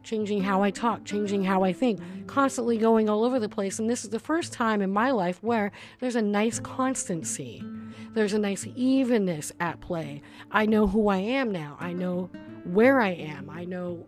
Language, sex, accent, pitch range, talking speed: English, female, American, 180-240 Hz, 200 wpm